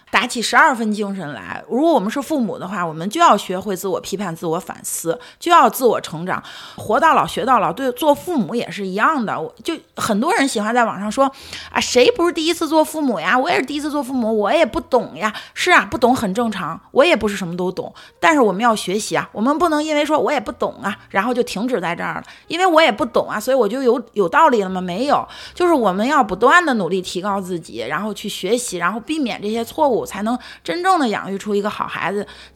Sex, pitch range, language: female, 195-270 Hz, Chinese